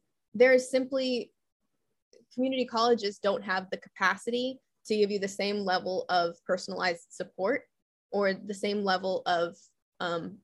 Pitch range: 185-230 Hz